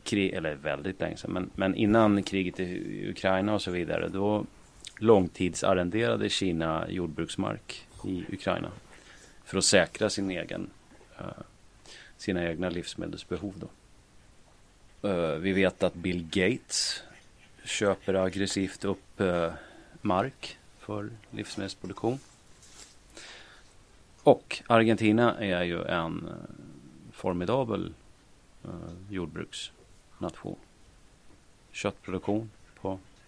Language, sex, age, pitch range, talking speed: Swedish, male, 30-49, 85-105 Hz, 90 wpm